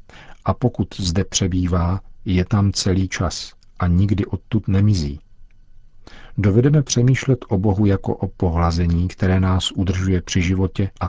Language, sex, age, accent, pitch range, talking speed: Czech, male, 50-69, native, 90-105 Hz, 135 wpm